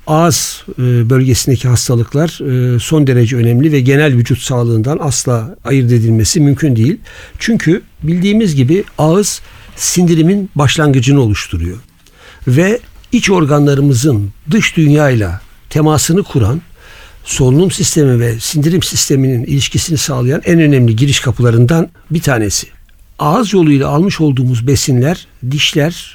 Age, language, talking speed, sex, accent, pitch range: 60-79, Turkish, 110 wpm, male, native, 120-155 Hz